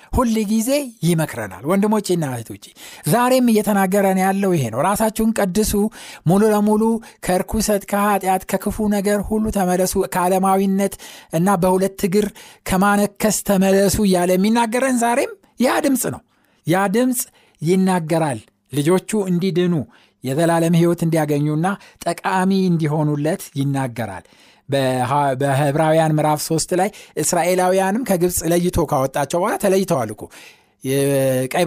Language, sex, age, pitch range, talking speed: Amharic, male, 60-79, 150-205 Hz, 100 wpm